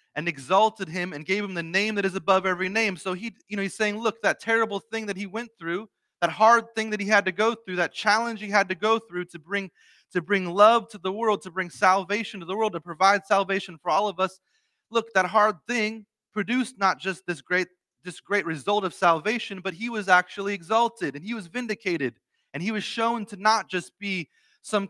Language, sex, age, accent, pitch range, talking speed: English, male, 30-49, American, 180-220 Hz, 230 wpm